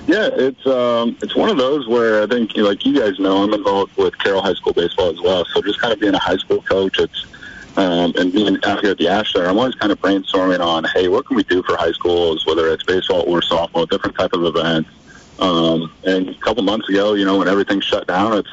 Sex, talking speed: male, 260 wpm